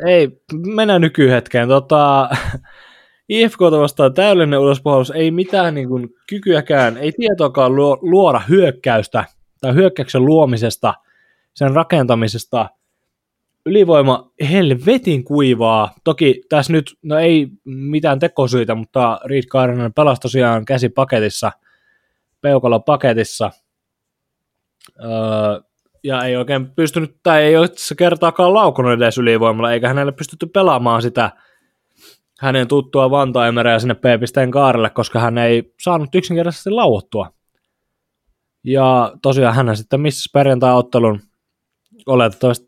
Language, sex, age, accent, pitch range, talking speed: Finnish, male, 20-39, native, 120-155 Hz, 110 wpm